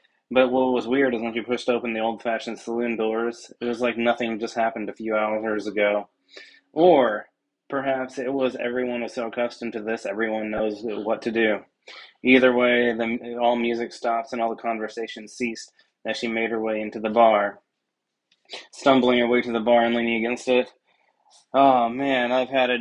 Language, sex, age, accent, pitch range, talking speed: English, male, 20-39, American, 110-120 Hz, 190 wpm